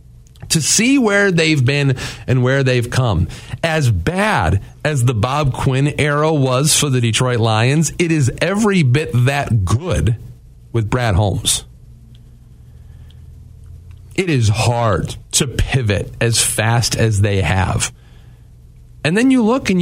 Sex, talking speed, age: male, 135 wpm, 40-59